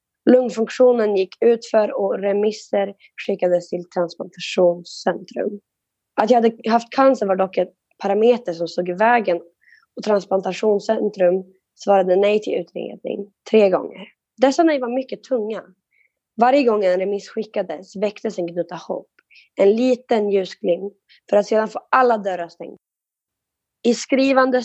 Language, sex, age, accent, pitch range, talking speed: Swedish, female, 20-39, native, 180-225 Hz, 135 wpm